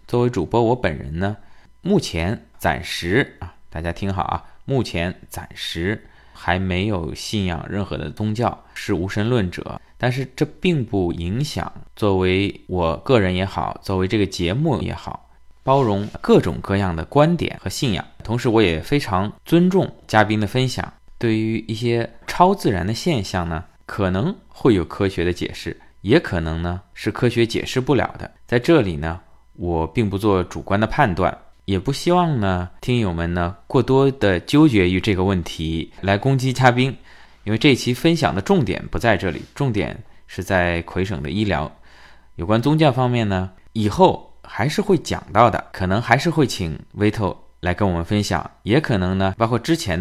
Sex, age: male, 20-39